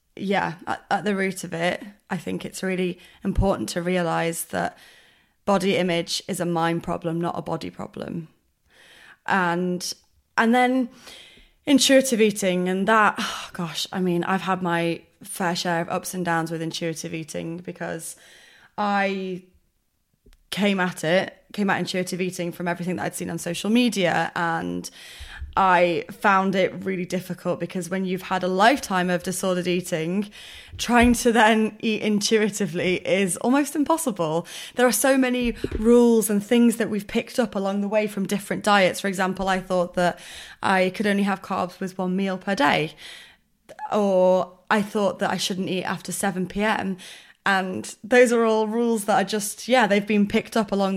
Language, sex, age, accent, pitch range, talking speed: English, female, 20-39, British, 175-215 Hz, 165 wpm